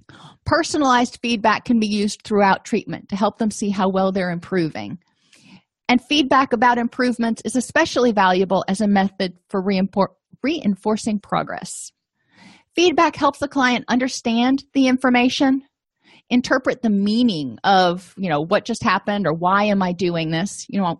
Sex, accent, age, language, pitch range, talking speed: female, American, 40-59, English, 185-245 Hz, 150 wpm